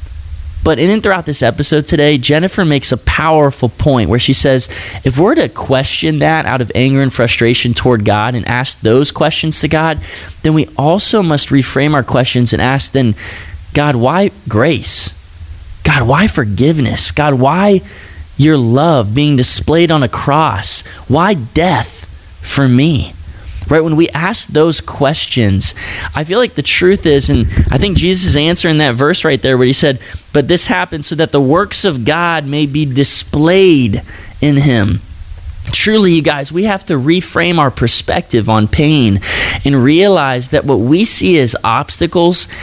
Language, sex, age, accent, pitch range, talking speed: English, male, 20-39, American, 110-155 Hz, 170 wpm